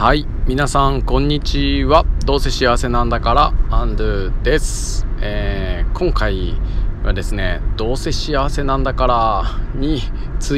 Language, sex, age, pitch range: Japanese, male, 20-39, 95-125 Hz